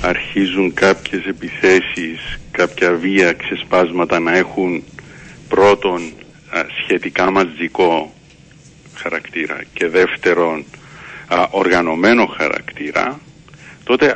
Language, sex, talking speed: Greek, male, 70 wpm